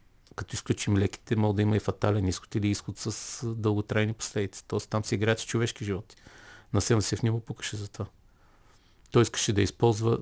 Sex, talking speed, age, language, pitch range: male, 190 wpm, 50-69, Bulgarian, 95-115 Hz